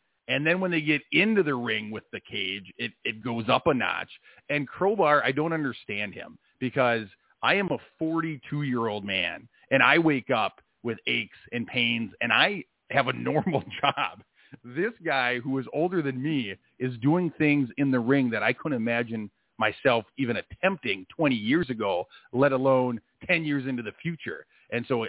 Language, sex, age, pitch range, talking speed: English, male, 40-59, 120-155 Hz, 180 wpm